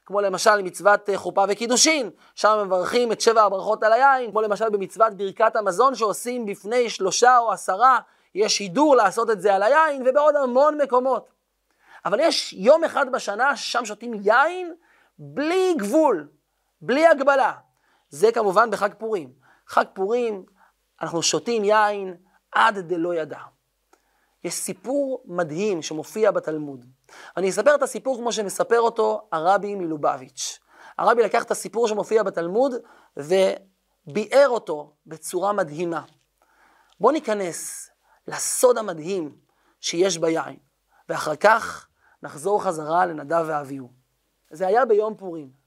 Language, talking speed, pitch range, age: Hebrew, 125 wpm, 185-255 Hz, 30-49